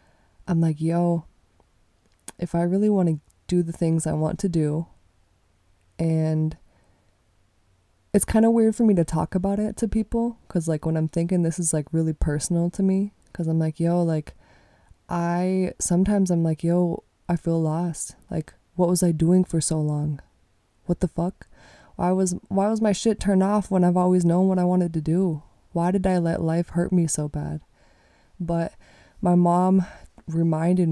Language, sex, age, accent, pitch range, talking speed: English, female, 20-39, American, 155-180 Hz, 180 wpm